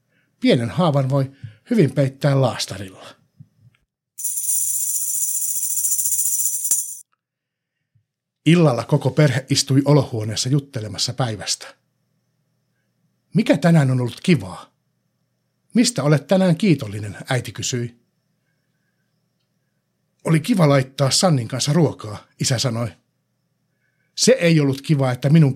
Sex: male